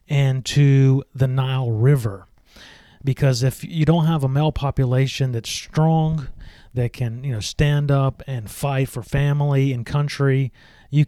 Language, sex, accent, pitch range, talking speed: English, male, American, 120-145 Hz, 150 wpm